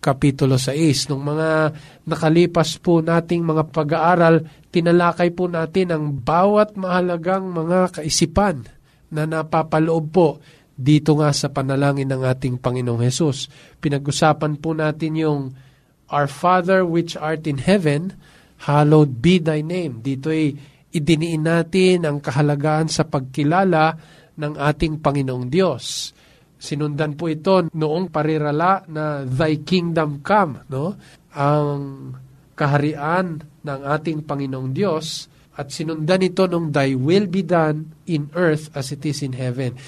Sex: male